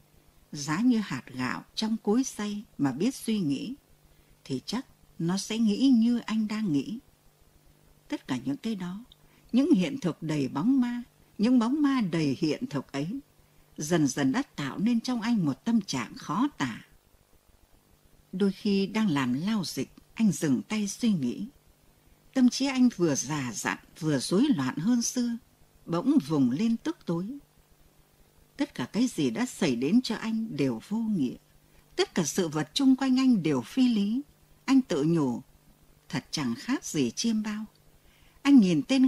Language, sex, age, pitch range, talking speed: Vietnamese, female, 60-79, 160-255 Hz, 170 wpm